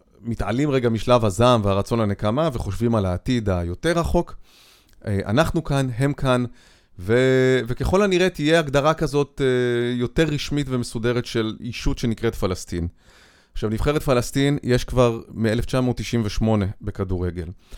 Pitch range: 105-140 Hz